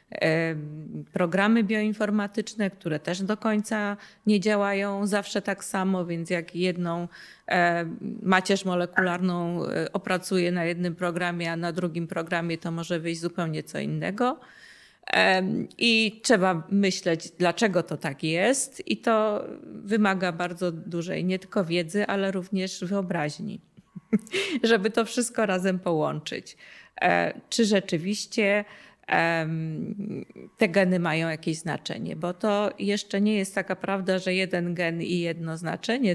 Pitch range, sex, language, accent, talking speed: 175-215 Hz, female, Polish, native, 120 wpm